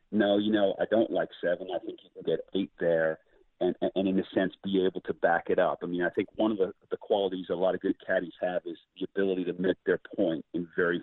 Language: English